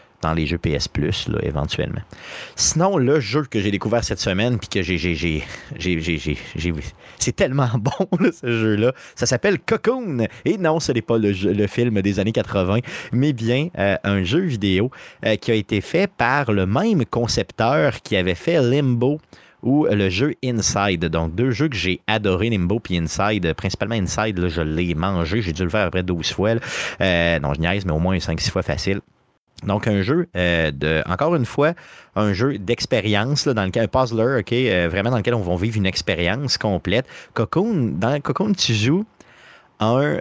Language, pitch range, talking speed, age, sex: French, 95-130 Hz, 195 wpm, 30-49, male